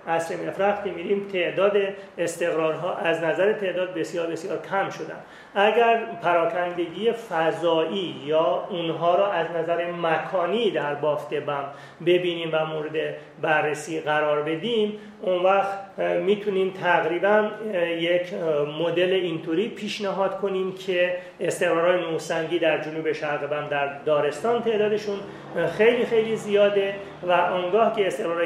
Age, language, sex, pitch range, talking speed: 40-59, Persian, male, 165-200 Hz, 120 wpm